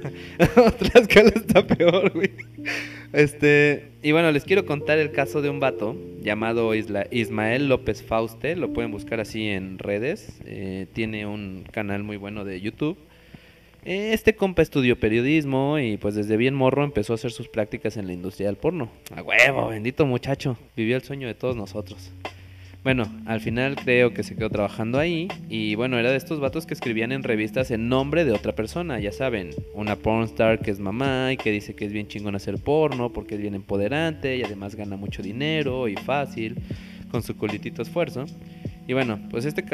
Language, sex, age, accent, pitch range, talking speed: Spanish, male, 20-39, Mexican, 105-140 Hz, 185 wpm